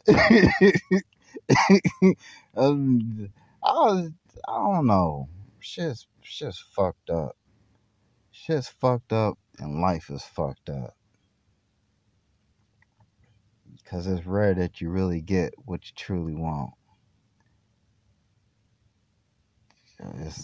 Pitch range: 90-120 Hz